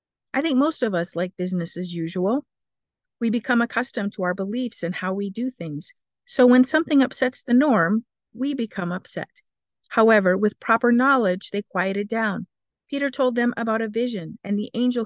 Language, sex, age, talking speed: English, female, 50-69, 180 wpm